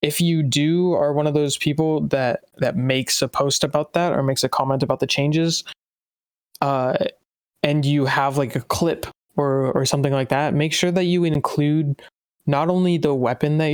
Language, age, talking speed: English, 20-39, 190 wpm